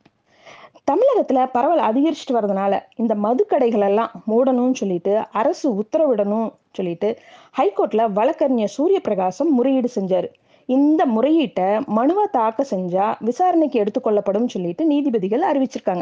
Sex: female